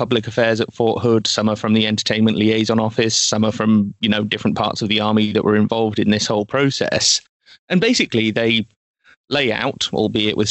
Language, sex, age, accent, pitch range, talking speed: English, male, 30-49, British, 110-130 Hz, 205 wpm